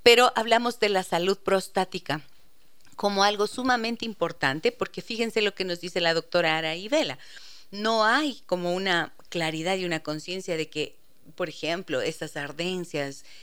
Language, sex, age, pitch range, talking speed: Spanish, female, 50-69, 155-200 Hz, 150 wpm